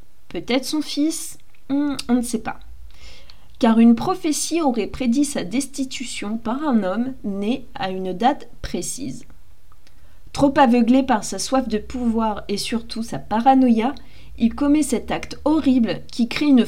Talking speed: 150 wpm